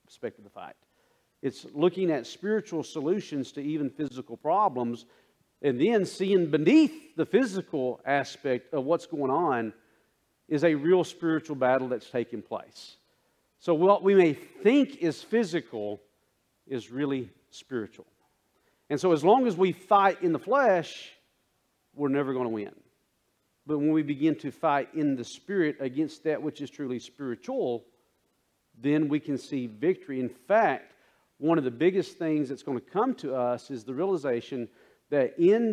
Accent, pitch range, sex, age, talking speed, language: American, 130-175 Hz, male, 50-69, 160 wpm, English